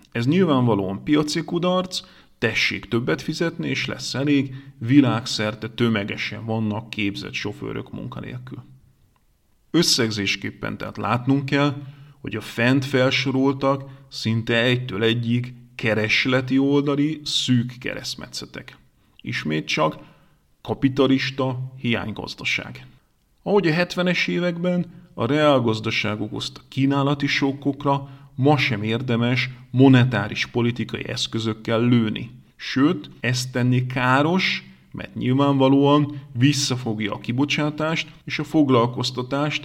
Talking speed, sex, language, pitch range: 95 wpm, male, Hungarian, 115-145 Hz